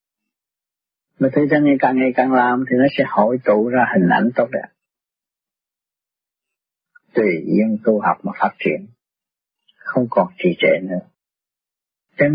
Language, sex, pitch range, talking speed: Vietnamese, male, 125-160 Hz, 145 wpm